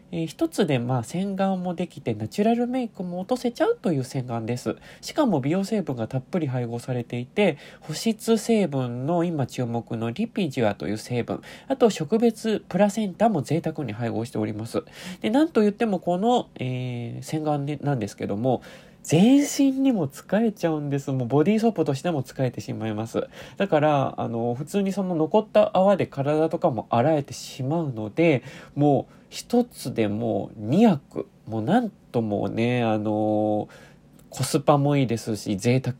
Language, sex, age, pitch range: Japanese, male, 20-39, 120-190 Hz